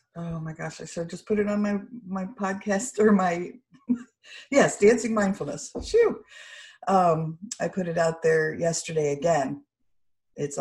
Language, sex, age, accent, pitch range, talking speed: English, female, 50-69, American, 150-195 Hz, 145 wpm